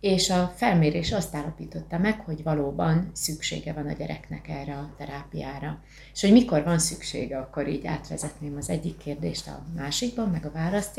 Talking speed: 170 wpm